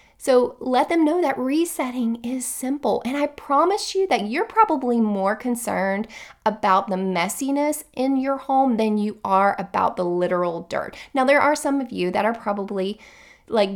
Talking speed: 175 wpm